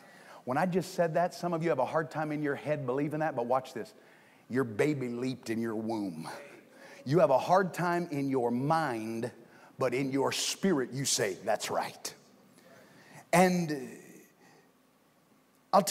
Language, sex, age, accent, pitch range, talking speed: English, male, 40-59, American, 155-205 Hz, 165 wpm